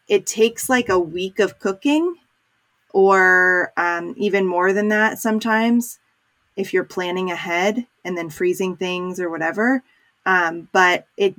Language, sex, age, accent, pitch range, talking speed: English, female, 20-39, American, 170-205 Hz, 140 wpm